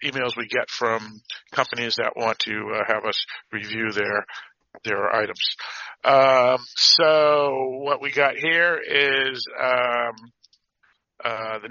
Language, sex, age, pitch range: English, male, 40-59, 110-130 Hz